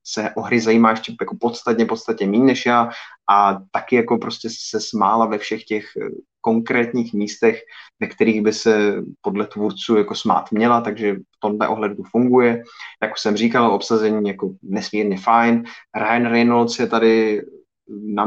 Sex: male